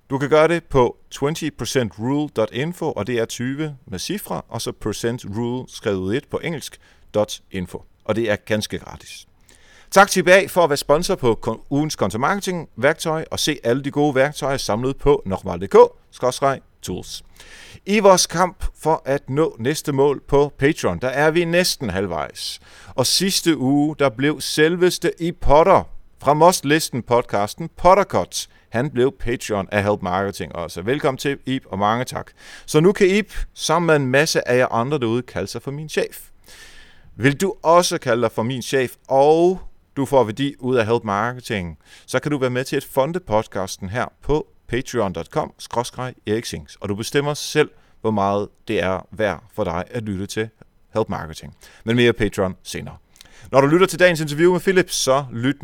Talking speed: 170 wpm